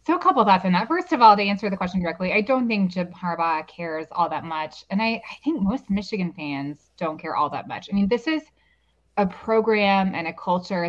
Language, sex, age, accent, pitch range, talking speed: English, female, 20-39, American, 165-215 Hz, 250 wpm